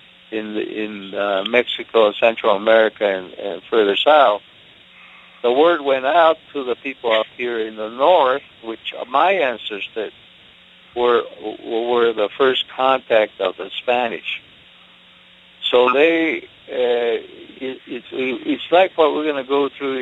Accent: American